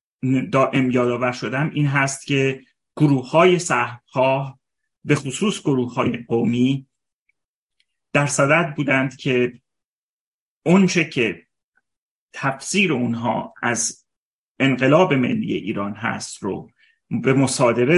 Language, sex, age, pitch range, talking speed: Persian, male, 30-49, 125-155 Hz, 100 wpm